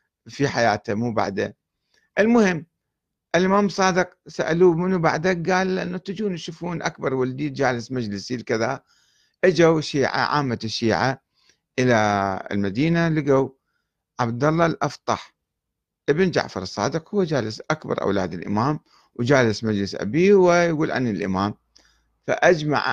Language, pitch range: Arabic, 115-165 Hz